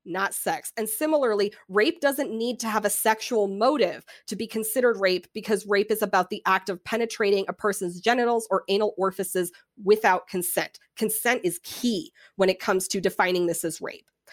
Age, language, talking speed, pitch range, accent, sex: 20-39, English, 180 wpm, 190-245 Hz, American, female